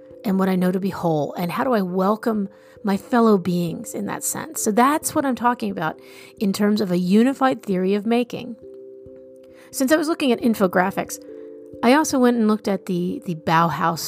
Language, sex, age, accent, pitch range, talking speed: English, female, 40-59, American, 185-245 Hz, 200 wpm